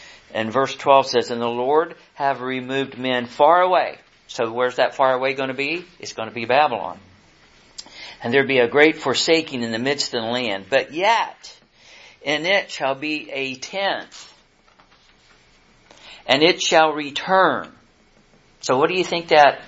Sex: male